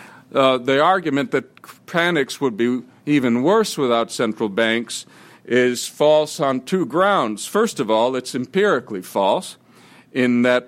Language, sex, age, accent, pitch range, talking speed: English, male, 50-69, American, 110-145 Hz, 140 wpm